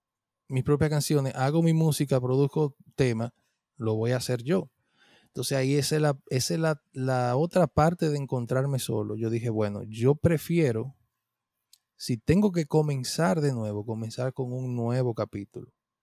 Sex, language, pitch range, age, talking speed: male, Spanish, 115-145 Hz, 30-49, 145 wpm